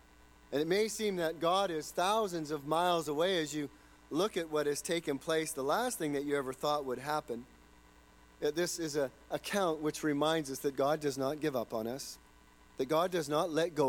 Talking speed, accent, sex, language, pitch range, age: 210 wpm, American, male, English, 130-175 Hz, 40-59